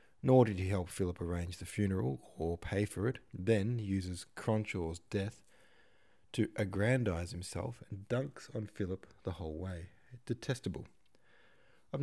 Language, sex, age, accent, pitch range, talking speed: English, male, 20-39, Australian, 90-110 Hz, 145 wpm